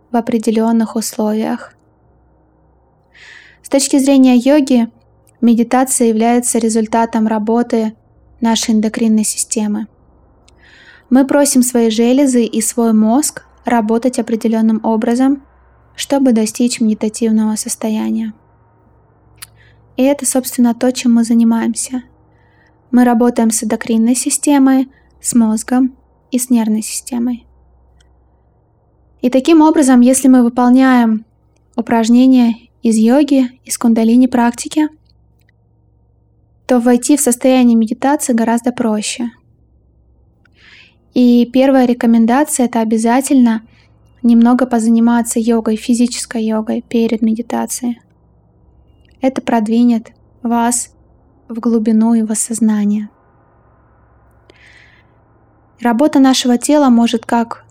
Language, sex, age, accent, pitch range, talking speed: Russian, female, 20-39, native, 225-250 Hz, 90 wpm